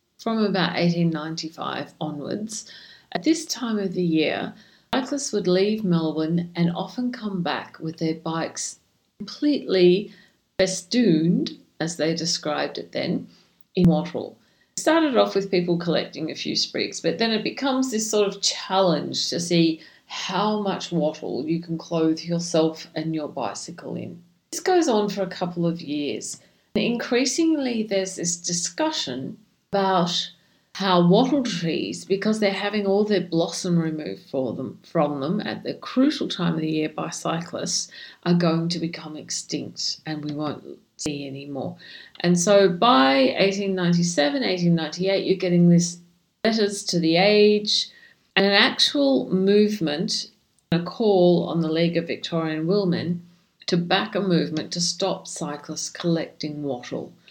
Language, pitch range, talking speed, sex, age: English, 165-205 Hz, 150 wpm, female, 50-69